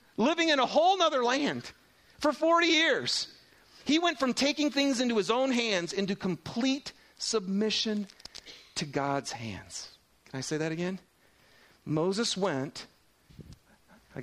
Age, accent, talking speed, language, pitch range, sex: 40-59, American, 135 wpm, English, 135-195 Hz, male